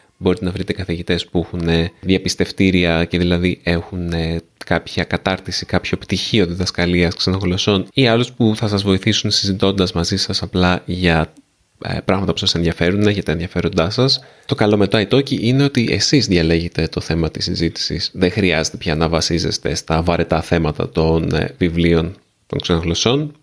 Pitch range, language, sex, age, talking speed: 85-105 Hz, Greek, male, 20-39, 155 wpm